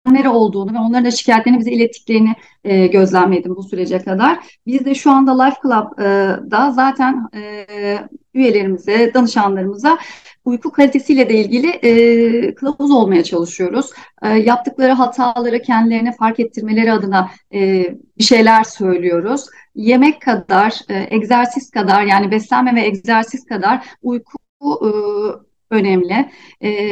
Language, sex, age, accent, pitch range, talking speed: Turkish, female, 40-59, native, 210-255 Hz, 125 wpm